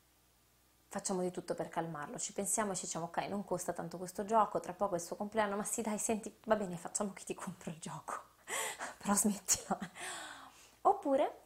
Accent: native